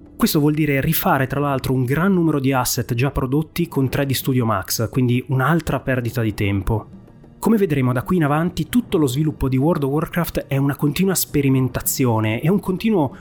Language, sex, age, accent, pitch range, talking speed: Italian, male, 30-49, native, 120-160 Hz, 190 wpm